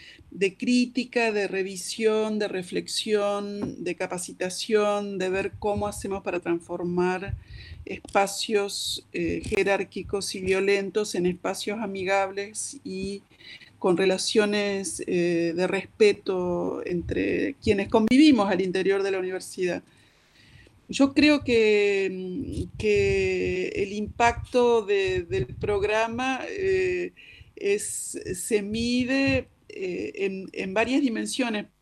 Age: 40-59